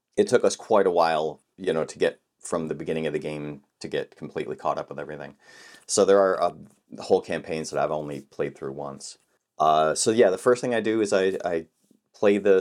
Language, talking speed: English, 230 wpm